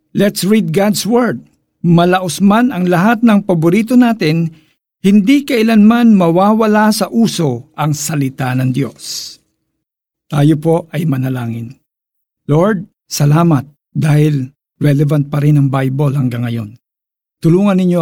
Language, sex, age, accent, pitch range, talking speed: Filipino, male, 50-69, native, 140-180 Hz, 115 wpm